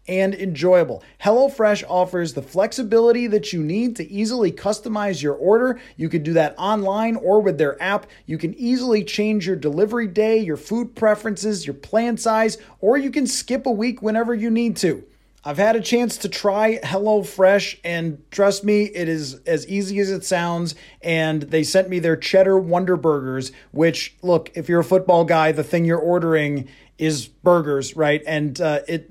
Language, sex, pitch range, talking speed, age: English, male, 160-210 Hz, 185 wpm, 30-49